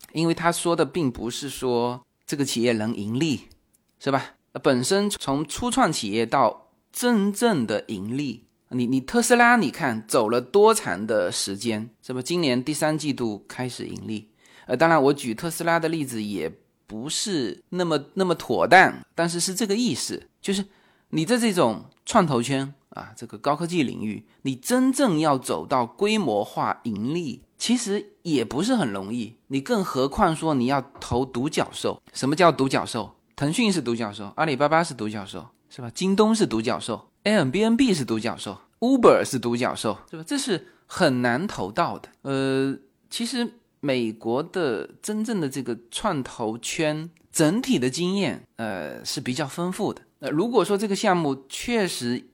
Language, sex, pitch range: Chinese, male, 125-195 Hz